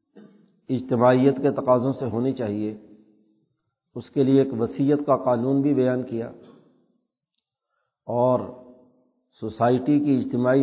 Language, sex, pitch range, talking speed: Urdu, male, 120-140 Hz, 115 wpm